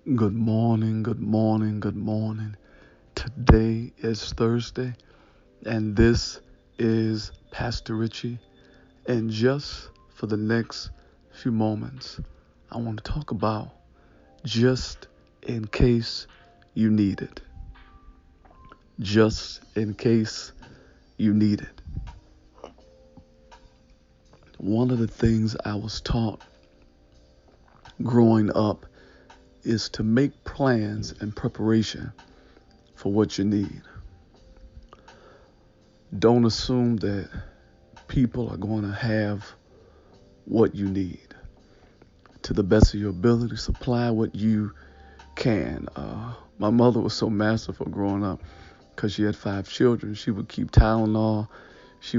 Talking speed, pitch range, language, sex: 110 wpm, 100-115 Hz, English, male